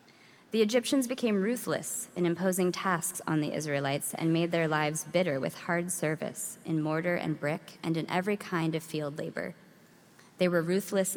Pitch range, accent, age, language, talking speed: 160-205 Hz, American, 20-39, English, 170 wpm